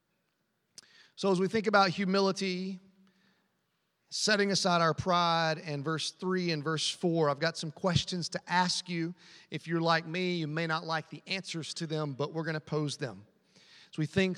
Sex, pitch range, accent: male, 155-195 Hz, American